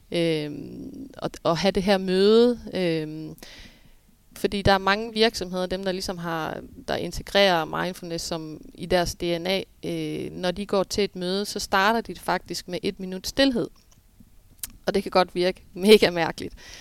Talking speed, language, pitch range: 165 wpm, Danish, 180-215 Hz